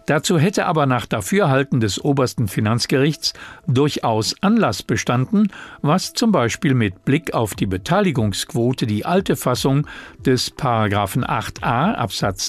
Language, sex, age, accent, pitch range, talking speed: German, male, 50-69, German, 110-165 Hz, 120 wpm